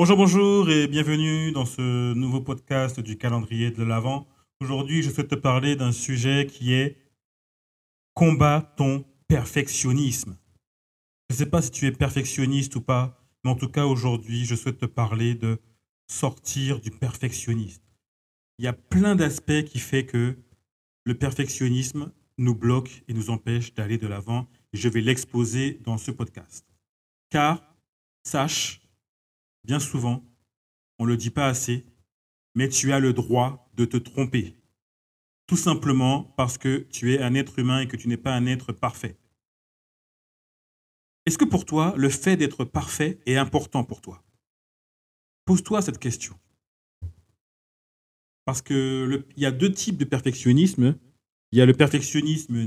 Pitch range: 115-140 Hz